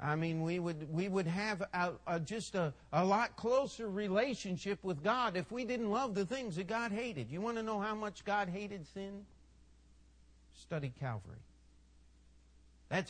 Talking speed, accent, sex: 175 wpm, American, male